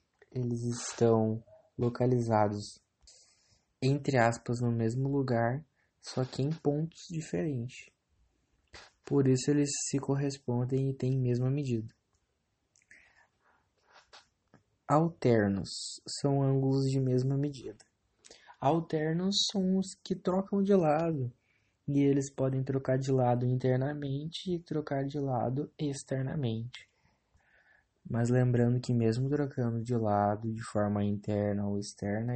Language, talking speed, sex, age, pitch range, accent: English, 110 wpm, male, 20-39, 110-140 Hz, Brazilian